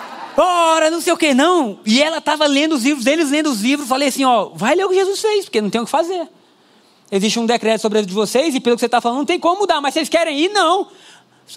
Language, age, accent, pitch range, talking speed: Portuguese, 20-39, Brazilian, 275-370 Hz, 280 wpm